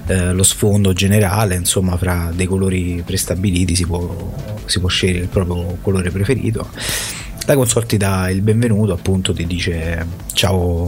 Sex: male